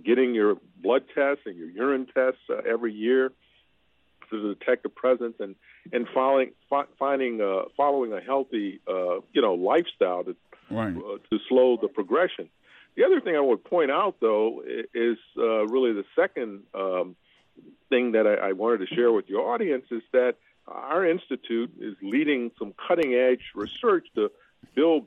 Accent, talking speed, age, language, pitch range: American, 165 wpm, 50-69, English, 110-170 Hz